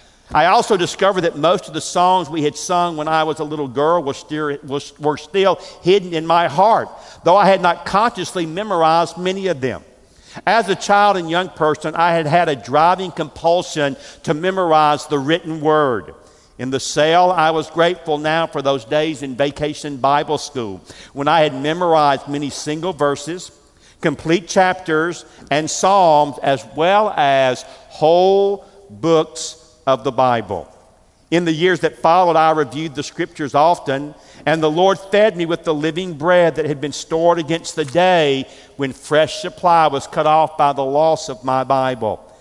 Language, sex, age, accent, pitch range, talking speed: English, male, 50-69, American, 145-175 Hz, 170 wpm